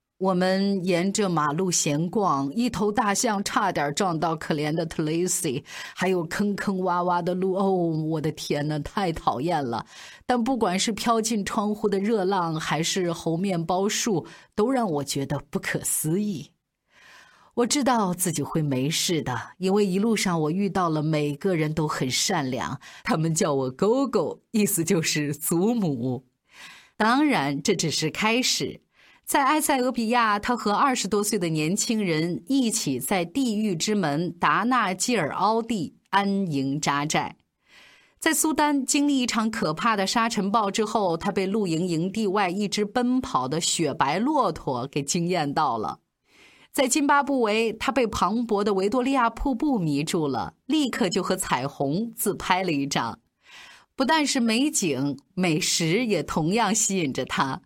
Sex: female